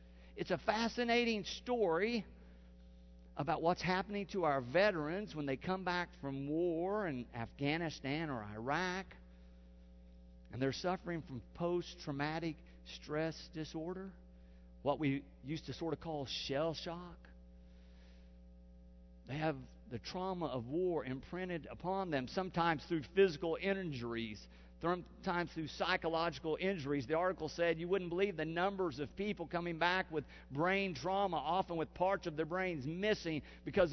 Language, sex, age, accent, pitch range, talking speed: English, male, 50-69, American, 135-185 Hz, 135 wpm